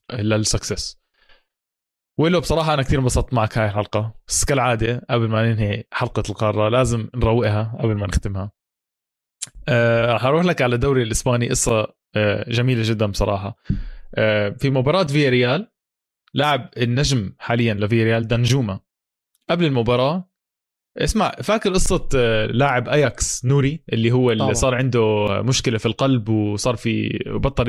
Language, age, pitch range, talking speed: Arabic, 20-39, 110-140 Hz, 130 wpm